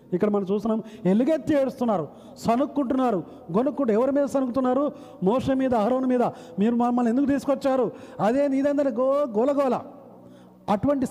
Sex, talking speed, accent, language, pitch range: male, 125 wpm, native, Telugu, 180-260 Hz